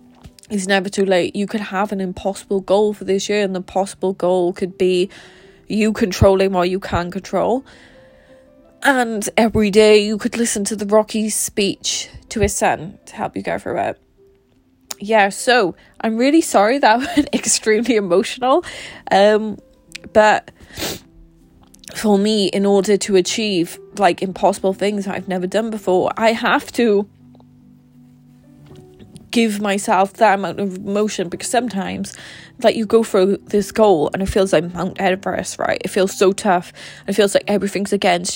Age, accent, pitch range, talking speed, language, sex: 20-39, British, 185-215 Hz, 160 wpm, English, female